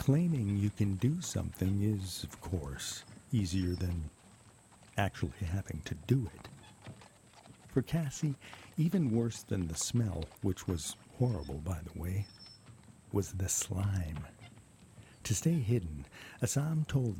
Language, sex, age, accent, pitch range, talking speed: English, male, 50-69, American, 95-120 Hz, 125 wpm